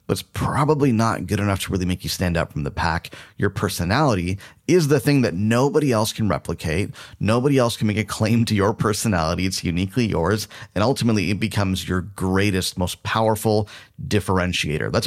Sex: male